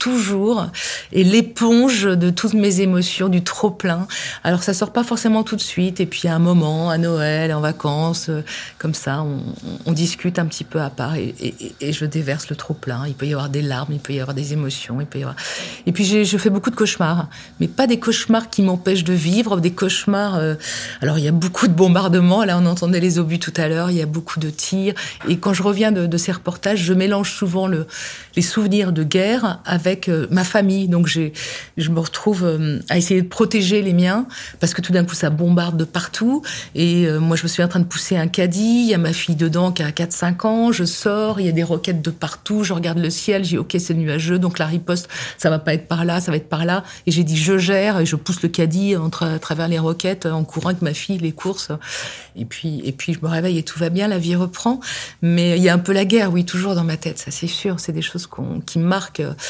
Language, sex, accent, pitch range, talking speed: French, female, French, 160-195 Hz, 250 wpm